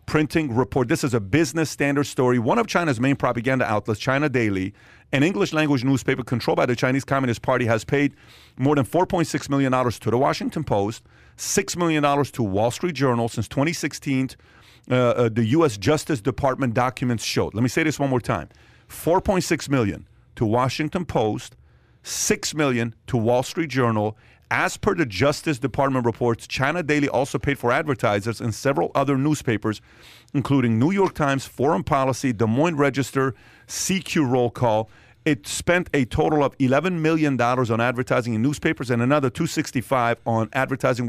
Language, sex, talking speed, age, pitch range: English, male, 170 wpm, 40-59, 120-145 Hz